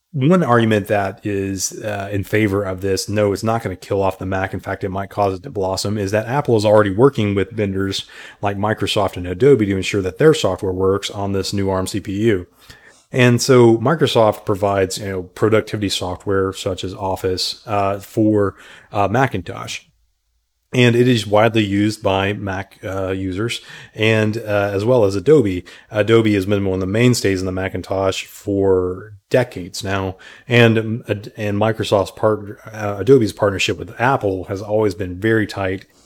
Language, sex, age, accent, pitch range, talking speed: English, male, 30-49, American, 95-110 Hz, 175 wpm